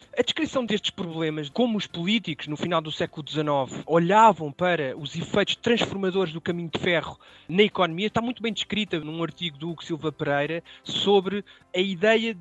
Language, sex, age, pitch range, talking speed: Portuguese, male, 20-39, 170-220 Hz, 175 wpm